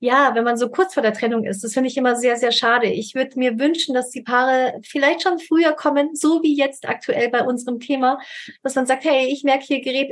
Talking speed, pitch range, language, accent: 250 wpm, 220-275 Hz, German, German